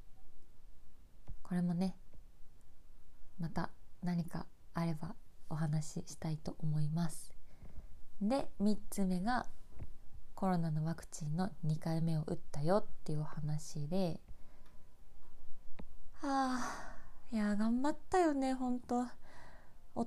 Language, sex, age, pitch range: Japanese, female, 20-39, 150-205 Hz